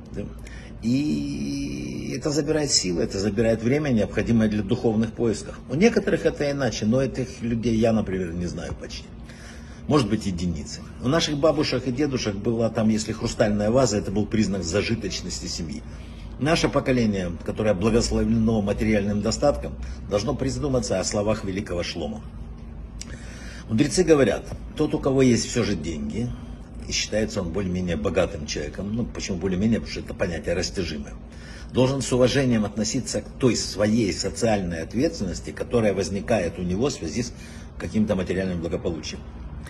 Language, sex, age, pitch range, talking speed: Russian, male, 60-79, 90-125 Hz, 145 wpm